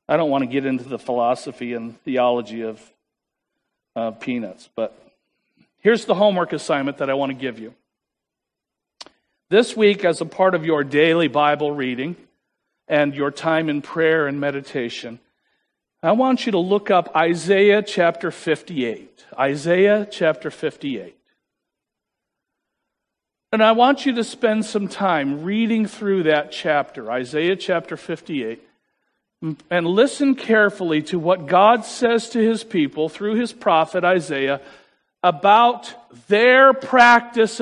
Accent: American